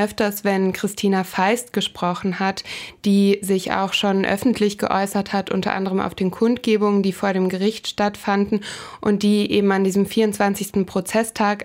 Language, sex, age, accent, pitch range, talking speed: German, female, 20-39, German, 195-215 Hz, 155 wpm